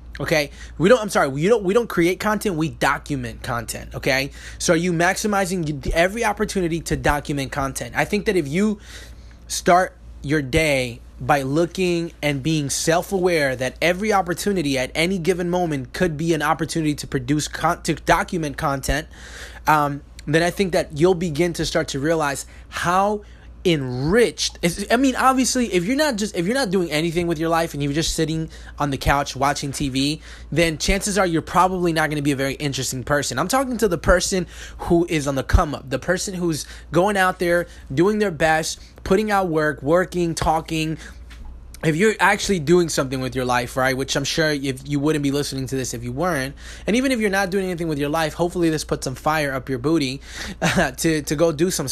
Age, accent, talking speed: 20-39, American, 205 wpm